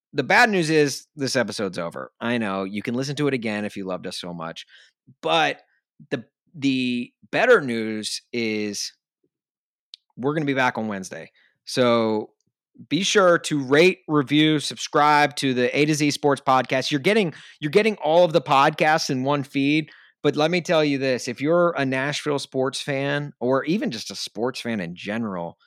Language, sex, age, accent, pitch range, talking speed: English, male, 30-49, American, 115-145 Hz, 185 wpm